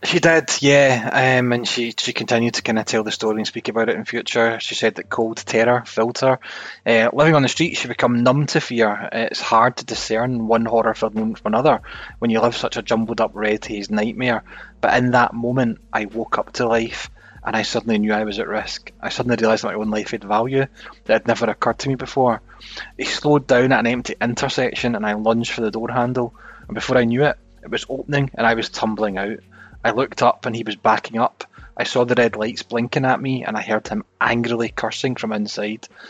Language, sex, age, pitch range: English, male, 20-39, 110-125 Hz